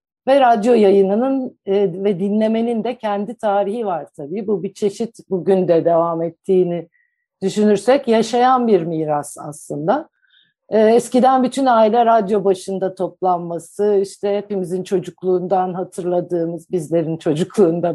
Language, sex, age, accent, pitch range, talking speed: Turkish, female, 60-79, native, 175-225 Hz, 115 wpm